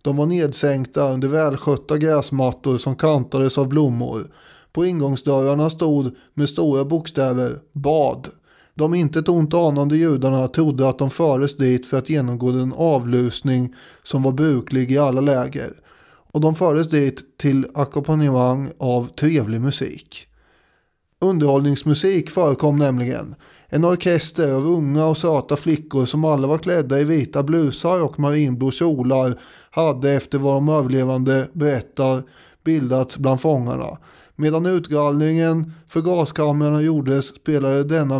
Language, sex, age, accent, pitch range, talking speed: English, male, 30-49, Swedish, 135-155 Hz, 130 wpm